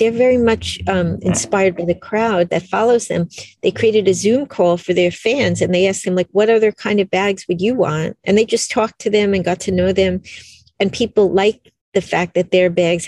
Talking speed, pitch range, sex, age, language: 235 wpm, 175-205 Hz, female, 50-69, English